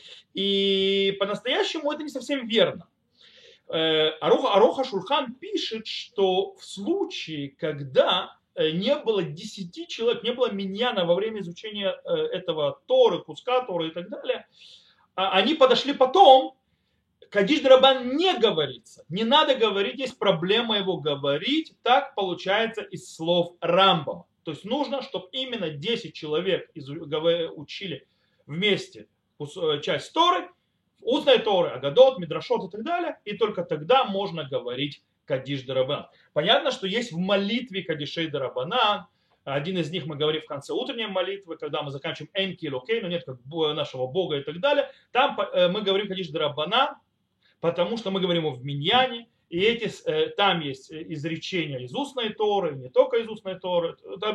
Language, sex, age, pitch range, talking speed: Russian, male, 30-49, 170-260 Hz, 140 wpm